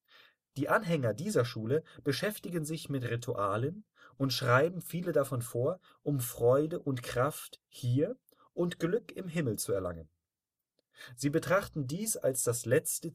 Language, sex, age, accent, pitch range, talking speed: German, male, 30-49, German, 120-160 Hz, 135 wpm